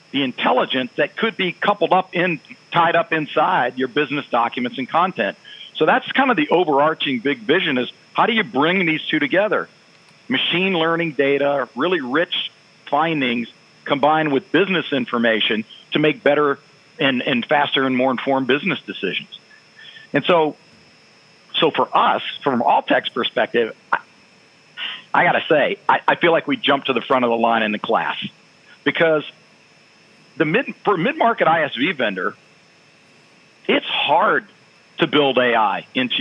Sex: male